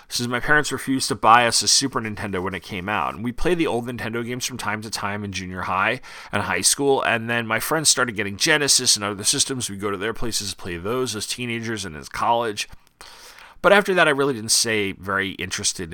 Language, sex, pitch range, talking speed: English, male, 105-140 Hz, 235 wpm